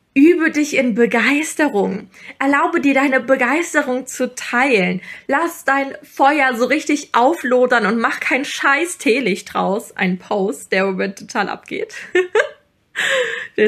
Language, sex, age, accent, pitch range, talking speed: German, female, 20-39, German, 215-285 Hz, 130 wpm